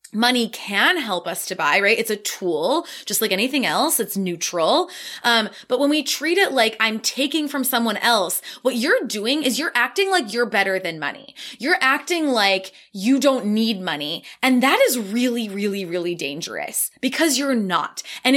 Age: 20-39